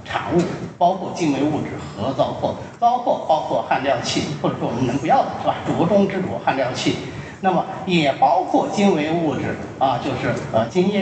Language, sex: Chinese, male